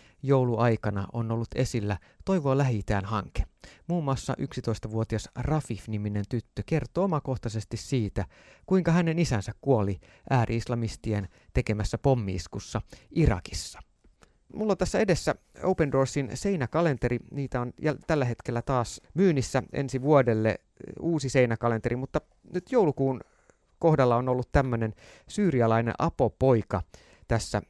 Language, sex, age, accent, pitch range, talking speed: Finnish, male, 30-49, native, 100-135 Hz, 110 wpm